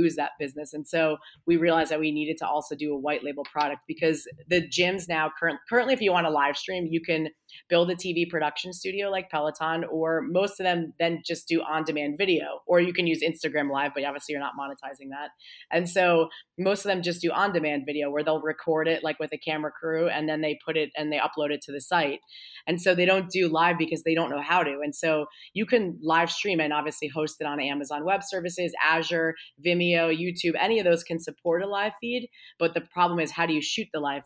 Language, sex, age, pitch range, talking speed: English, female, 30-49, 150-170 Hz, 235 wpm